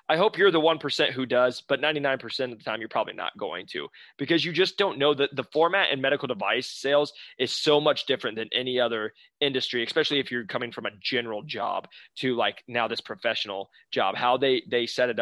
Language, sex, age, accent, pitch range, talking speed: English, male, 20-39, American, 120-145 Hz, 220 wpm